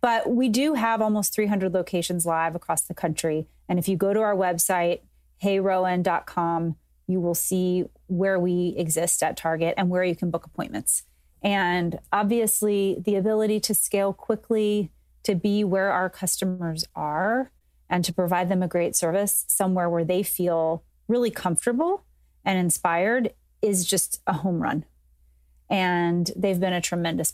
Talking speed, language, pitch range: 155 wpm, English, 170-200 Hz